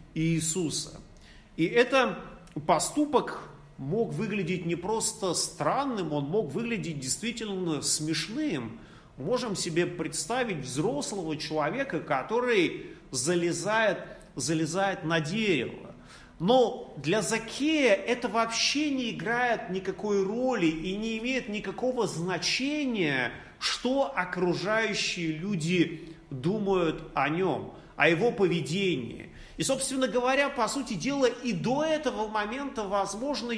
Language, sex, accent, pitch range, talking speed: Russian, male, native, 175-250 Hz, 105 wpm